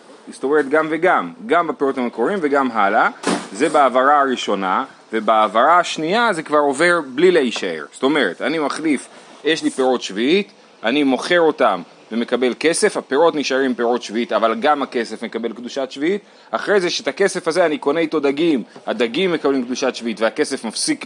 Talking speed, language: 160 wpm, Hebrew